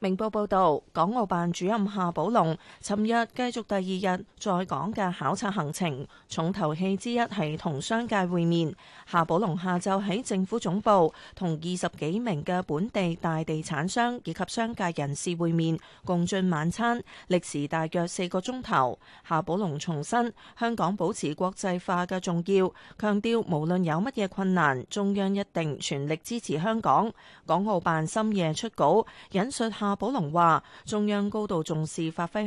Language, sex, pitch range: Chinese, female, 165-215 Hz